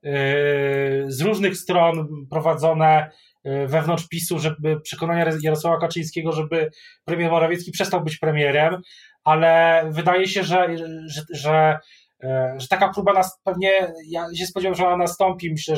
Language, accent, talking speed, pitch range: Polish, native, 135 wpm, 150-175 Hz